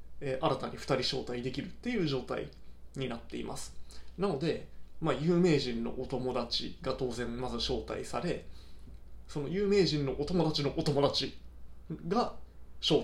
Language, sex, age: Japanese, male, 20-39